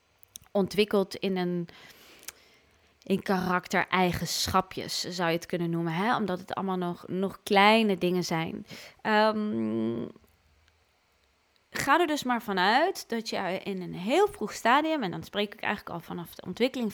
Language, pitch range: Dutch, 170-210 Hz